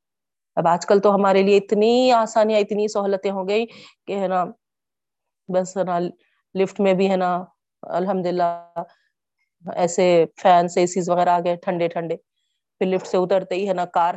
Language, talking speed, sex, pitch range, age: Urdu, 165 wpm, female, 175-220 Hz, 30-49